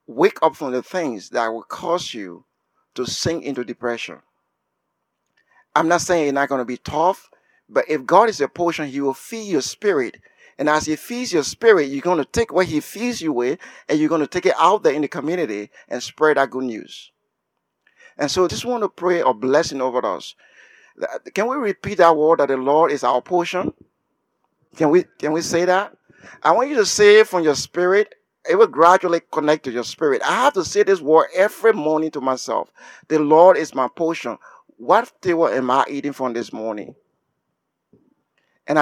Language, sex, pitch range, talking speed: English, male, 130-180 Hz, 200 wpm